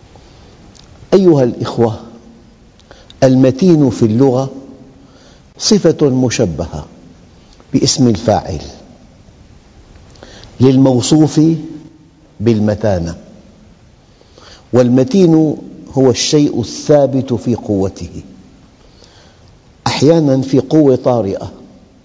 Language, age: Arabic, 50-69